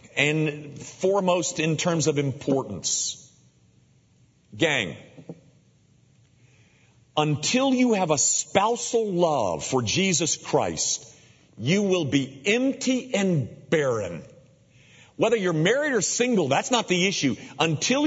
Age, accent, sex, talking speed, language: 50-69, American, male, 105 wpm, English